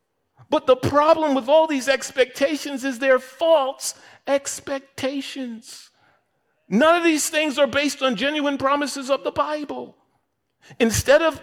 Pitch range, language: 195-285 Hz, English